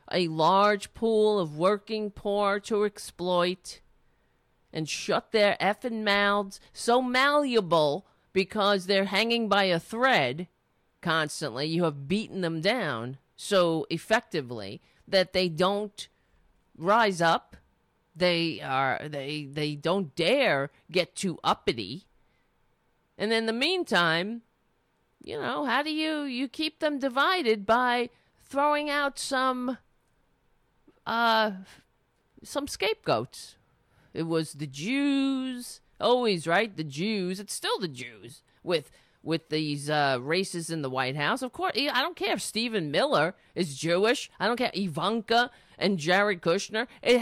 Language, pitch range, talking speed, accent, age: English, 170-250 Hz, 130 wpm, American, 50-69